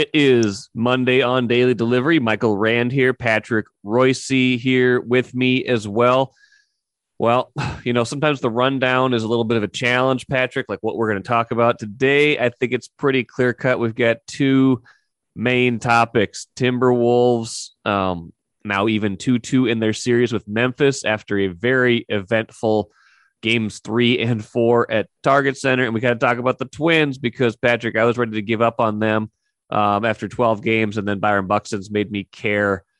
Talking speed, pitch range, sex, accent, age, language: 180 wpm, 105-125 Hz, male, American, 30-49, English